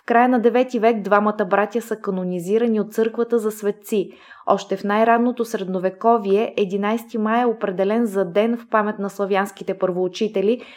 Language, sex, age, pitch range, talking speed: Bulgarian, female, 20-39, 195-230 Hz, 155 wpm